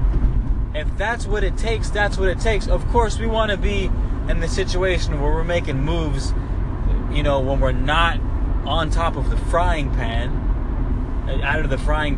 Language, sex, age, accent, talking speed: English, male, 20-39, American, 180 wpm